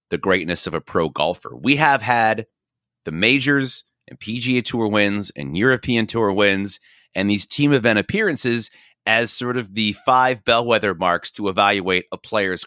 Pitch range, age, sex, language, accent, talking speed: 105-140 Hz, 30-49, male, English, American, 165 wpm